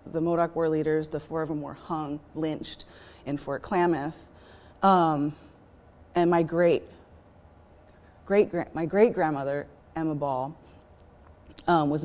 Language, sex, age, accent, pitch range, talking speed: English, female, 30-49, American, 135-160 Hz, 140 wpm